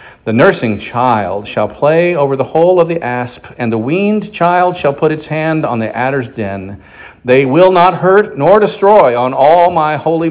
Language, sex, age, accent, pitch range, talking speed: English, male, 50-69, American, 110-170 Hz, 190 wpm